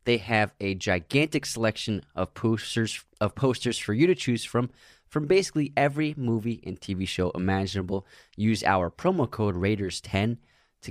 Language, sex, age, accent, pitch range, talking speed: English, male, 20-39, American, 90-120 Hz, 155 wpm